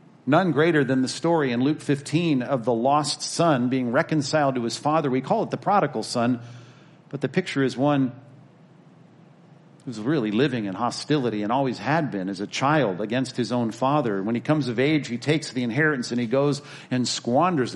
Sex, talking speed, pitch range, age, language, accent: male, 195 wpm, 120-155 Hz, 50-69, English, American